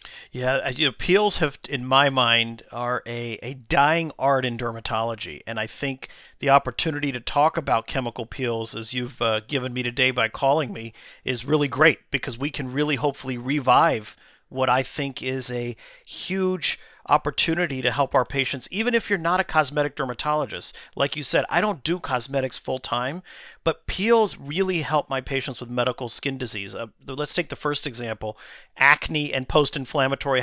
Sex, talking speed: male, 175 wpm